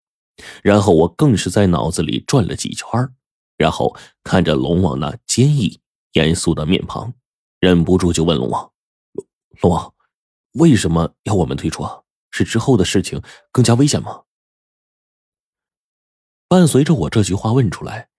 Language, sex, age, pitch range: Chinese, male, 30-49, 80-105 Hz